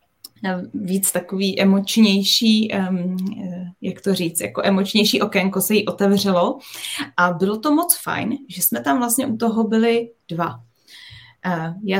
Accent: native